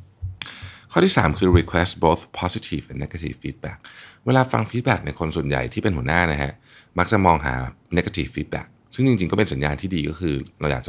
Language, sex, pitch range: Thai, male, 75-105 Hz